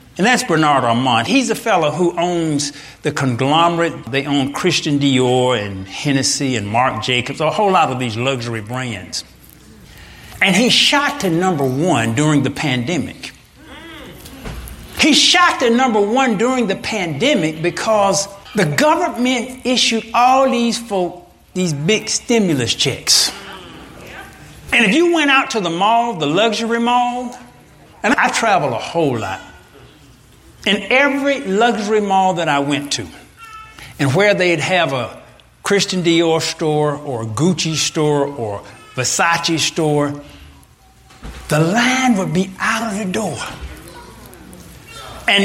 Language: English